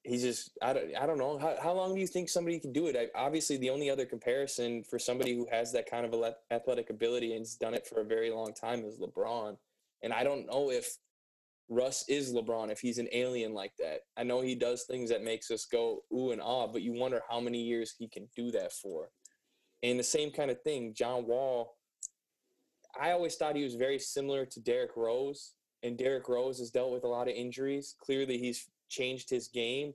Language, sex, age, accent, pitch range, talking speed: English, male, 20-39, American, 120-140 Hz, 220 wpm